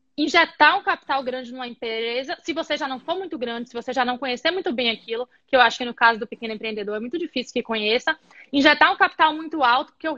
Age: 20-39